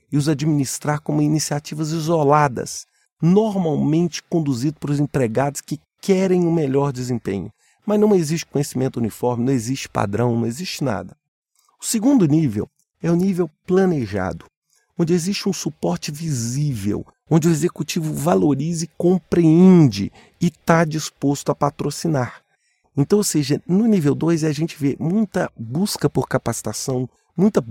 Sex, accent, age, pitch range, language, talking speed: male, Brazilian, 40-59, 120-160 Hz, English, 140 wpm